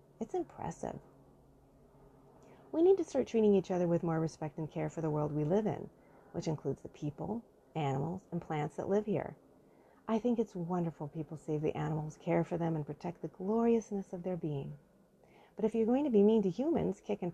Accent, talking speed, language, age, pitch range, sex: American, 205 wpm, English, 30-49, 155-205 Hz, female